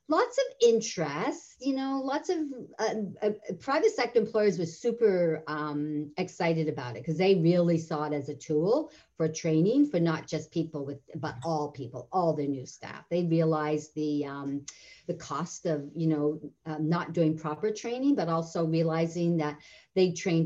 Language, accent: English, American